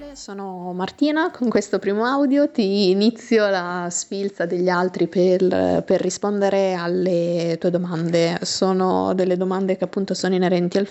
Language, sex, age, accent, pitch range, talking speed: Italian, female, 20-39, native, 175-200 Hz, 145 wpm